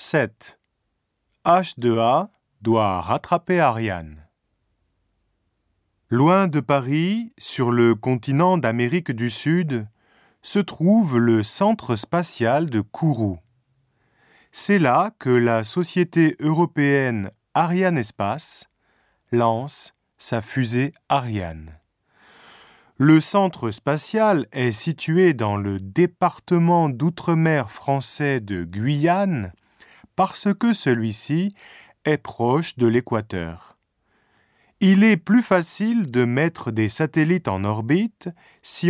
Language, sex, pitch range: Japanese, male, 110-170 Hz